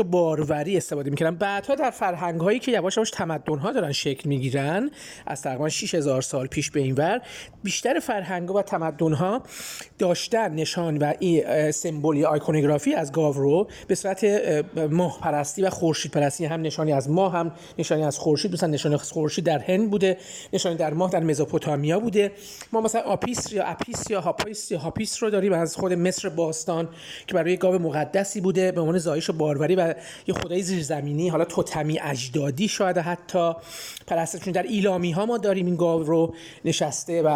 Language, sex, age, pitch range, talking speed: Persian, male, 30-49, 155-185 Hz, 170 wpm